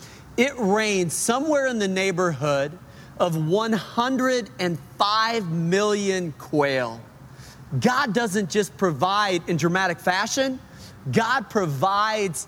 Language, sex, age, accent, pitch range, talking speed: English, male, 40-59, American, 150-215 Hz, 90 wpm